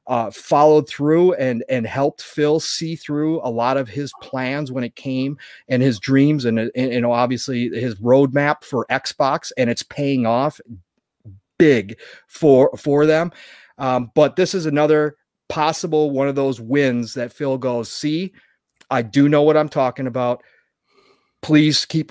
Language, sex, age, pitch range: English, male, 30-49, 125-155 Hz